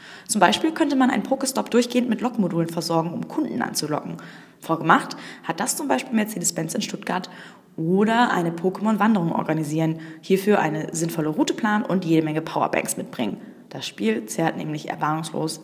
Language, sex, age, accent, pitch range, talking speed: German, female, 20-39, German, 165-255 Hz, 155 wpm